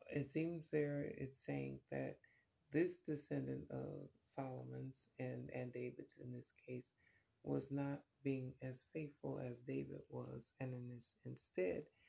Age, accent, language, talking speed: 30-49, American, English, 130 wpm